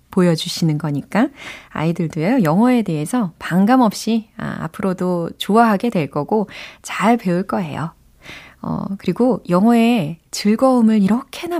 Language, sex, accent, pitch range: Korean, female, native, 160-225 Hz